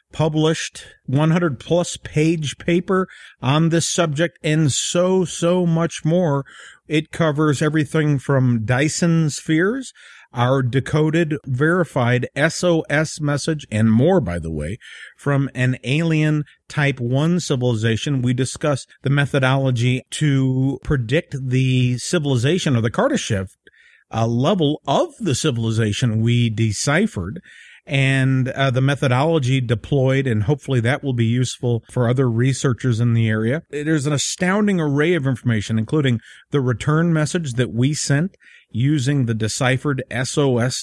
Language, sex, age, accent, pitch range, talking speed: English, male, 50-69, American, 125-155 Hz, 130 wpm